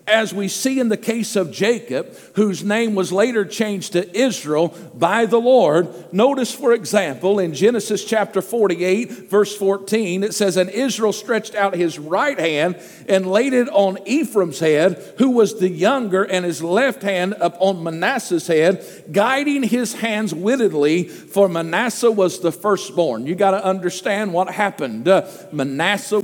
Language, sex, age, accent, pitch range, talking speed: English, male, 50-69, American, 185-240 Hz, 160 wpm